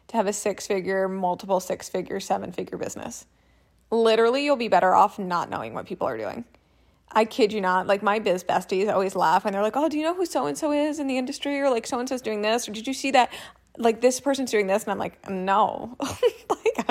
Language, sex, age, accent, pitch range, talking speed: English, female, 20-39, American, 195-240 Hz, 235 wpm